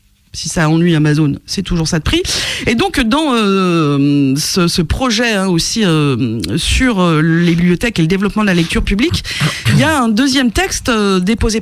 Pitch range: 195-265 Hz